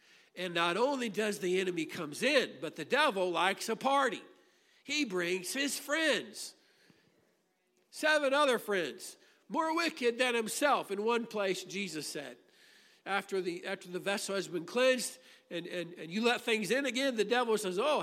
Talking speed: 165 wpm